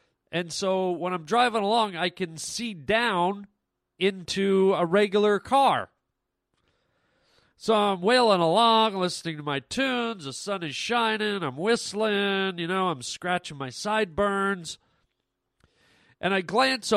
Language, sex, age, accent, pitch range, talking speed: English, male, 40-59, American, 170-215 Hz, 130 wpm